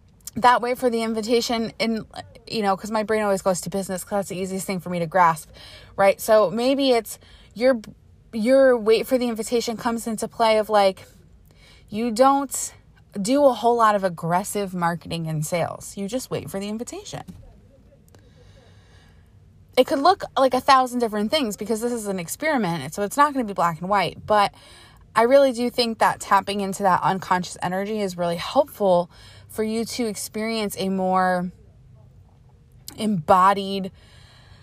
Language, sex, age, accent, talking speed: English, female, 20-39, American, 170 wpm